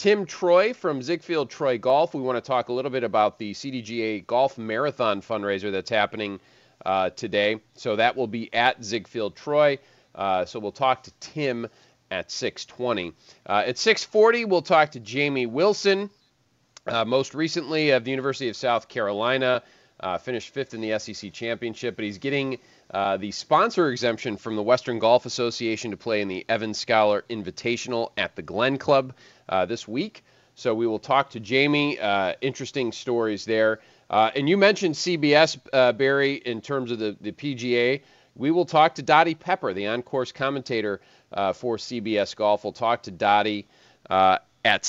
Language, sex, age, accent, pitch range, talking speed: English, male, 30-49, American, 110-140 Hz, 175 wpm